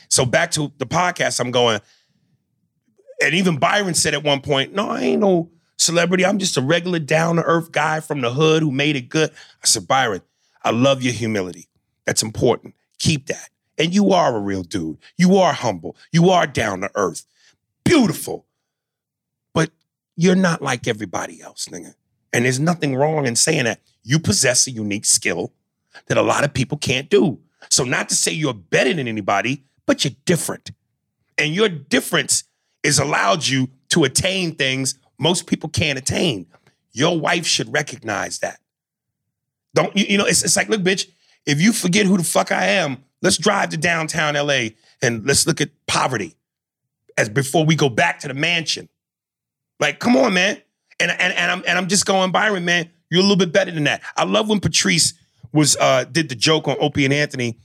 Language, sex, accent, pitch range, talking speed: English, male, American, 130-180 Hz, 190 wpm